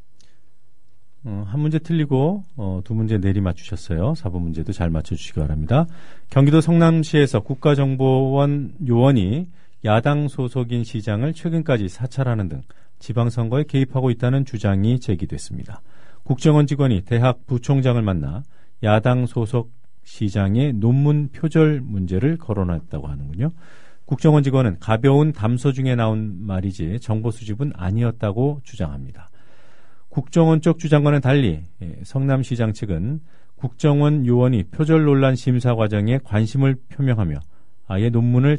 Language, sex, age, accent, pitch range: Korean, male, 40-59, native, 105-145 Hz